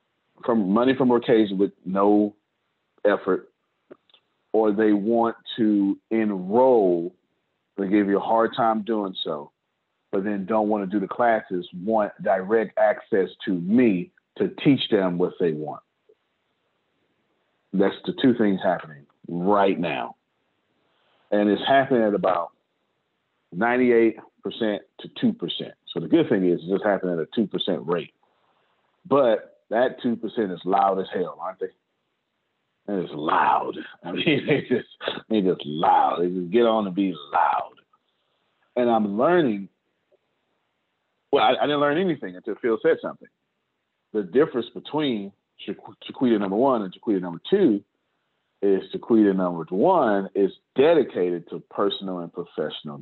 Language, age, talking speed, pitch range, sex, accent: English, 40-59, 140 wpm, 95-115 Hz, male, American